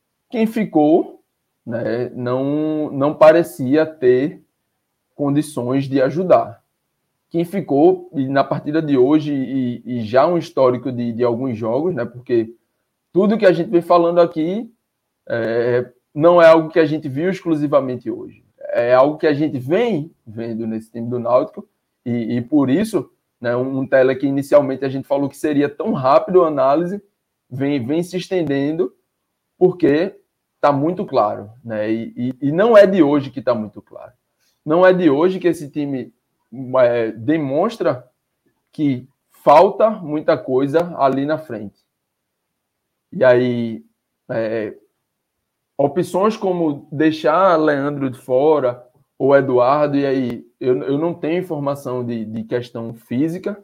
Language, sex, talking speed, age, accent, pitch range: Portuguese, male, 145 wpm, 20-39, Brazilian, 125-165 Hz